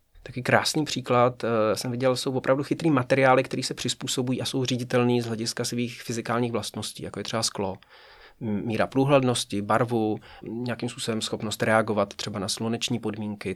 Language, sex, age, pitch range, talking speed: Czech, male, 30-49, 110-130 Hz, 155 wpm